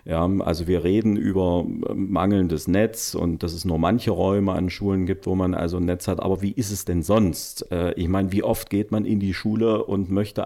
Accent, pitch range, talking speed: German, 90-105 Hz, 225 wpm